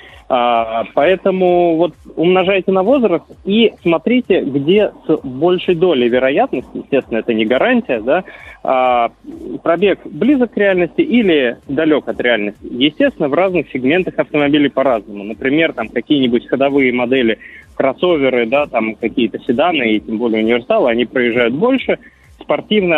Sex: male